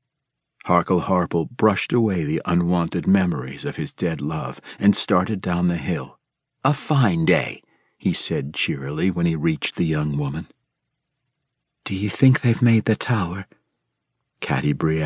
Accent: American